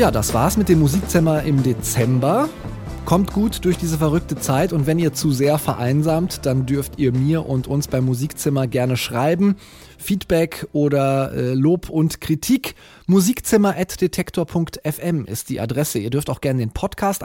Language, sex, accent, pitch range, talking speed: German, male, German, 130-175 Hz, 160 wpm